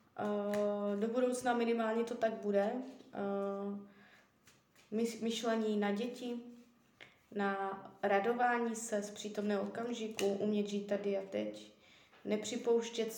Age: 20-39